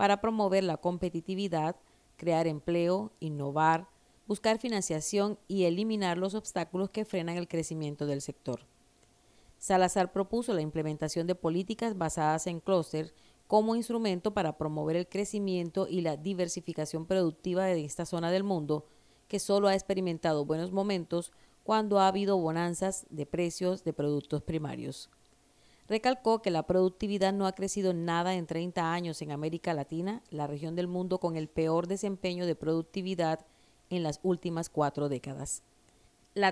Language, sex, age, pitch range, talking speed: Spanish, female, 40-59, 155-195 Hz, 145 wpm